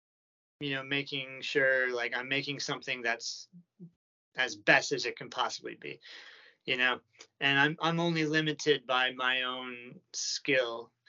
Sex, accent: male, American